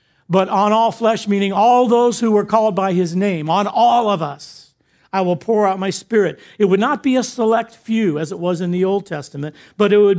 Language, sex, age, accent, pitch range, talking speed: English, male, 50-69, American, 155-210 Hz, 235 wpm